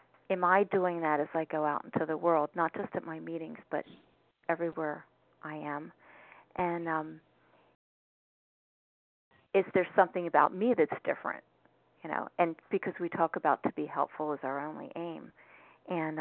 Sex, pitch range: female, 155-180 Hz